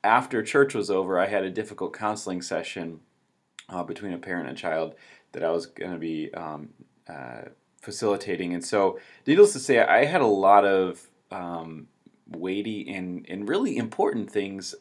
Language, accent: English, American